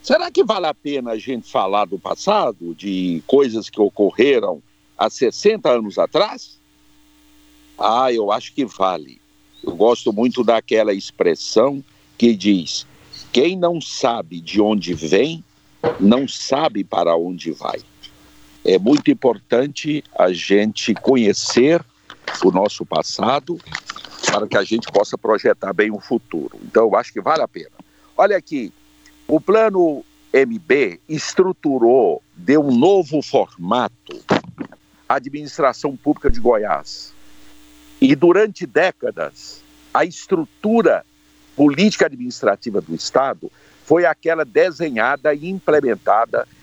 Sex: male